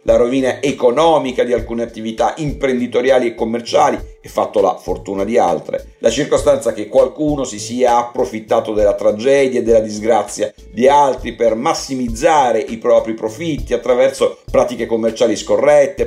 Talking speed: 140 wpm